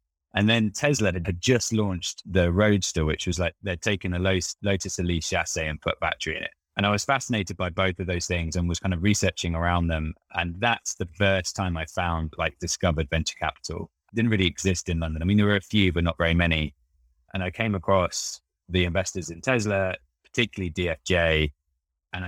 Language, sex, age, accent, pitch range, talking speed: English, male, 20-39, British, 80-100 Hz, 205 wpm